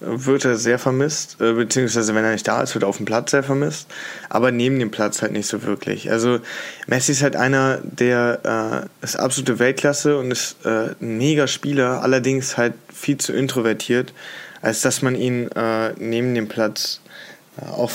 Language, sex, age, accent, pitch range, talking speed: German, male, 20-39, German, 115-135 Hz, 185 wpm